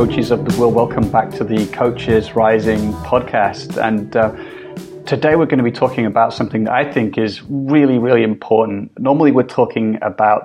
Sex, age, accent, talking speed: male, 30-49, British, 185 wpm